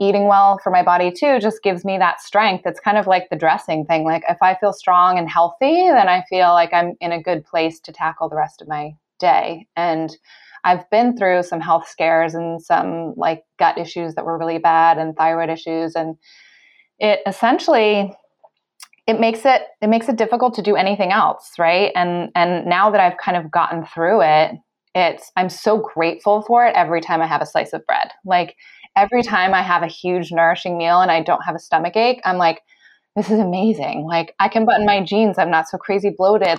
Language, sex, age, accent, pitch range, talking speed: English, female, 20-39, American, 165-205 Hz, 215 wpm